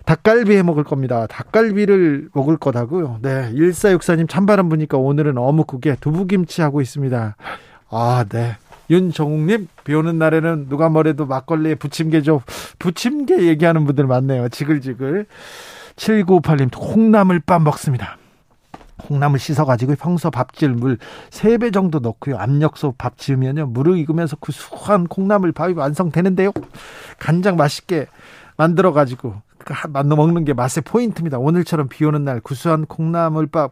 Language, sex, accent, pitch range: Korean, male, native, 140-180 Hz